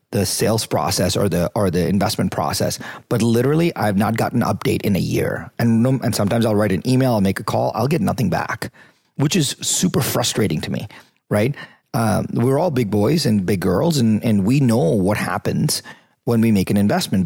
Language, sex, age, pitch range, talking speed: English, male, 30-49, 100-125 Hz, 210 wpm